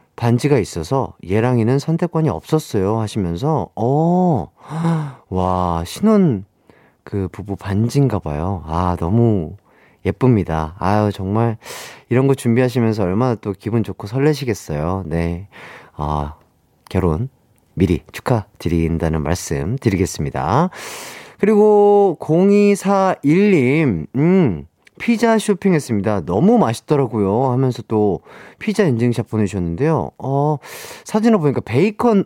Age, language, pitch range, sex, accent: 30-49, Korean, 95-150 Hz, male, native